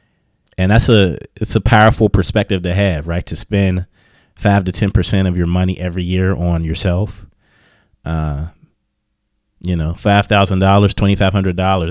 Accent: American